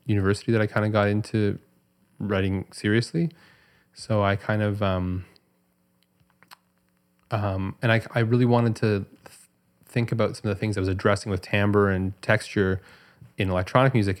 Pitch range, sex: 95-115 Hz, male